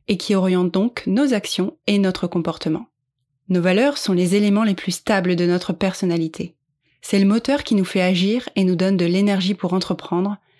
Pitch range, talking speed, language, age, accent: 170-205 Hz, 190 wpm, French, 20-39, French